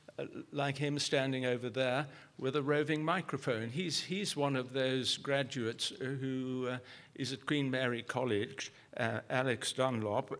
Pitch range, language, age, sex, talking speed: 115-140 Hz, English, 60-79, male, 150 wpm